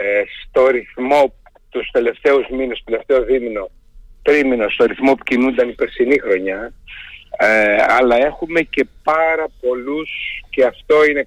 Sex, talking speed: male, 135 wpm